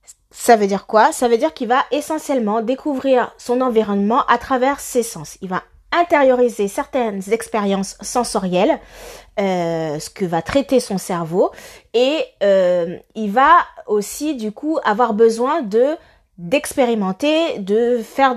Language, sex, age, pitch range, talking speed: French, female, 20-39, 190-260 Hz, 140 wpm